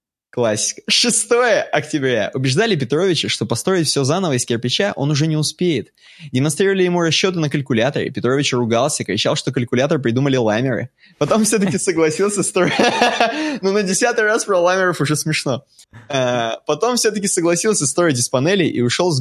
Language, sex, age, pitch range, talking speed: Russian, male, 20-39, 125-190 Hz, 155 wpm